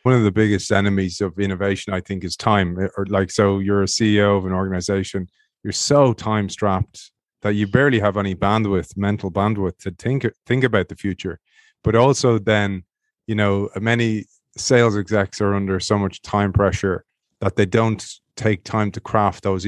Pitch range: 100-120 Hz